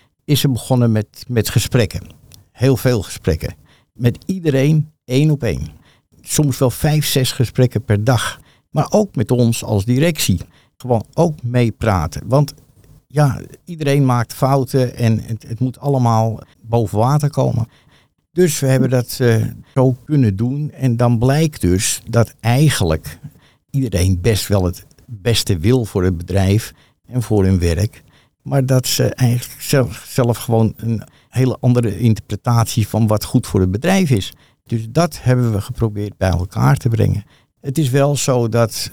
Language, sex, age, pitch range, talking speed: Dutch, male, 60-79, 105-130 Hz, 155 wpm